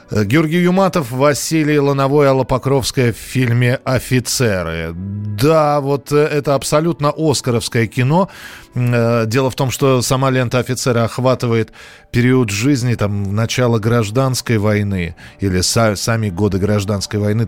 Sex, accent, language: male, native, Russian